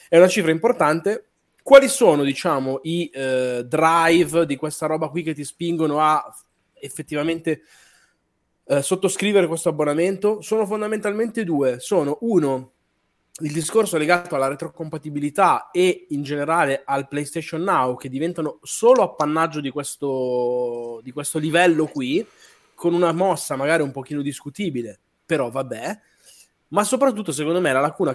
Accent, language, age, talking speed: native, Italian, 20-39, 135 wpm